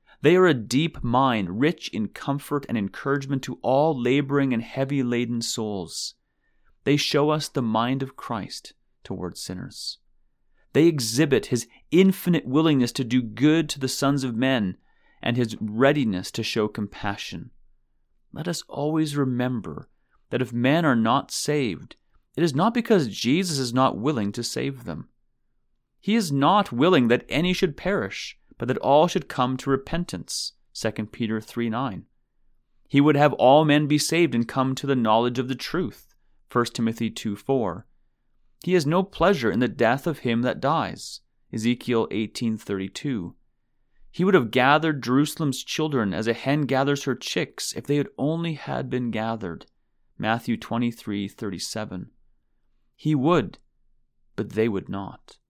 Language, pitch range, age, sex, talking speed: English, 115-145 Hz, 30-49, male, 160 wpm